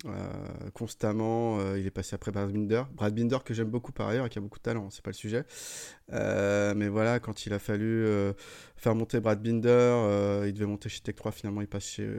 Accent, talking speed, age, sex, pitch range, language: French, 240 wpm, 20-39, male, 105-120 Hz, French